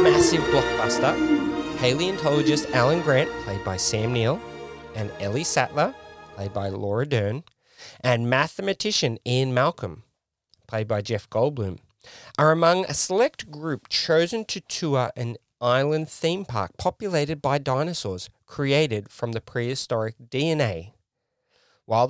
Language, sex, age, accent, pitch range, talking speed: English, male, 30-49, Australian, 110-155 Hz, 120 wpm